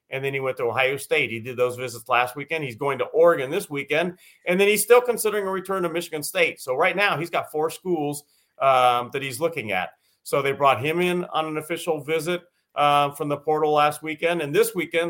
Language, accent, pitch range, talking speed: English, American, 135-165 Hz, 235 wpm